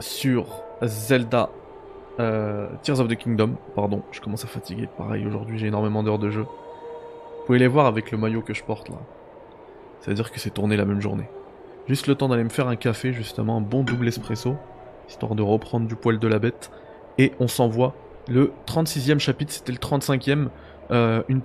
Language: French